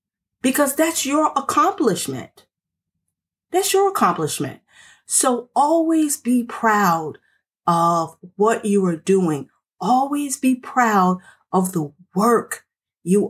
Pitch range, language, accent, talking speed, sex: 185-255 Hz, English, American, 105 wpm, female